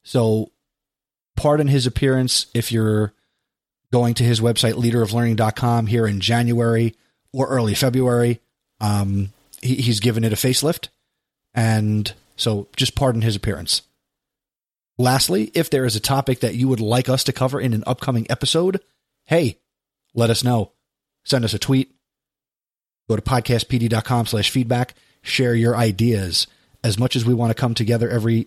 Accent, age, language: American, 30-49, English